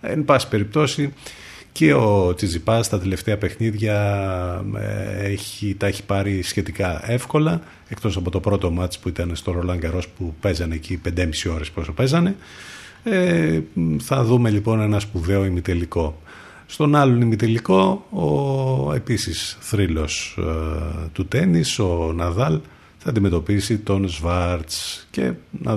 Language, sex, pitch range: Greek, male, 90-120 Hz